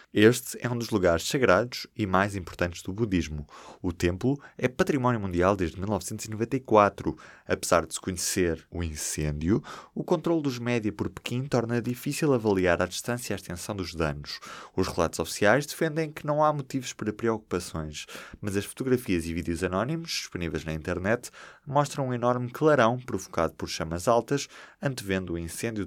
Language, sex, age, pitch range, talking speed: Portuguese, male, 20-39, 90-125 Hz, 160 wpm